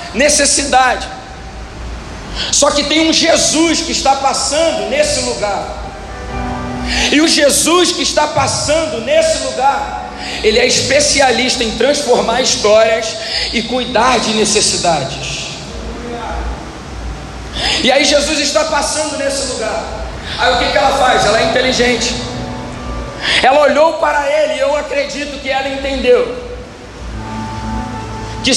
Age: 40-59